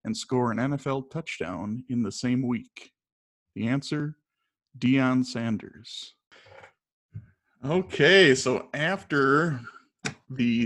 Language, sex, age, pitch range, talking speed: English, male, 40-59, 125-150 Hz, 95 wpm